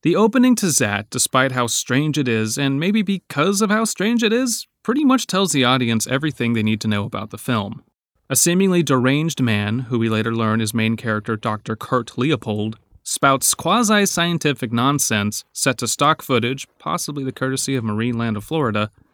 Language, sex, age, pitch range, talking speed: English, male, 30-49, 110-160 Hz, 185 wpm